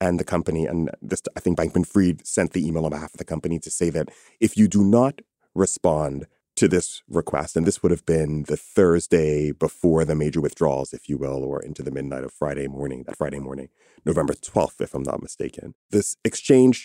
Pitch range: 75-115 Hz